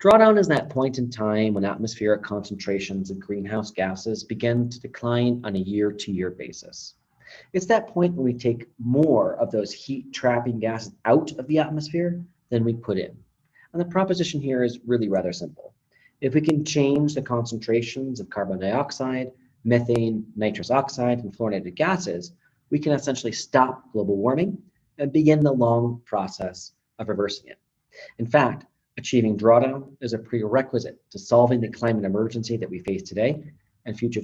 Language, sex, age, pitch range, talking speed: Finnish, male, 40-59, 110-145 Hz, 165 wpm